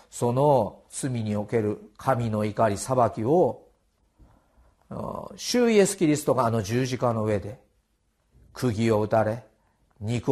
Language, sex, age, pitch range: Japanese, male, 50-69, 105-135 Hz